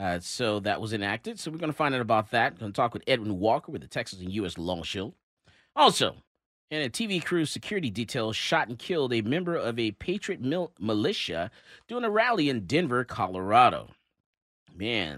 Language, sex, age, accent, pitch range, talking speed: English, male, 30-49, American, 105-150 Hz, 195 wpm